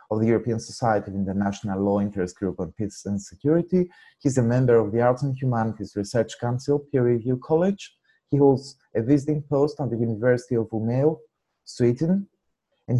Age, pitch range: 30-49, 105-135 Hz